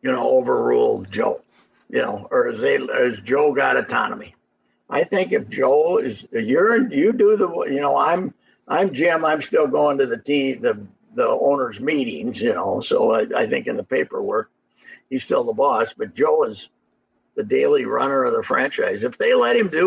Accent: American